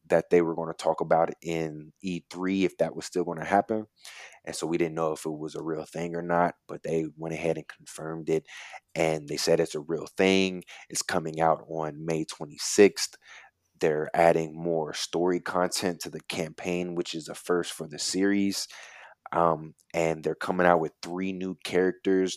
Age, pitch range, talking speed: 20-39, 80-95 Hz, 190 wpm